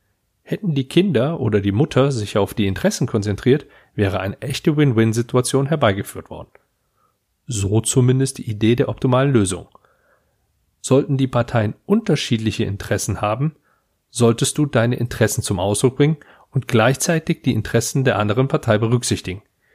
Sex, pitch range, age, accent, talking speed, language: male, 105-135 Hz, 40-59, German, 135 wpm, German